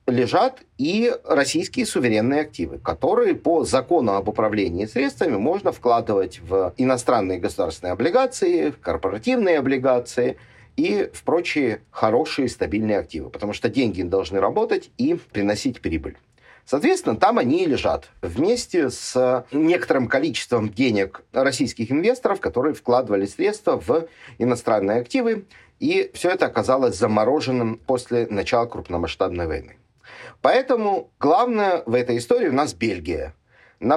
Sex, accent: male, native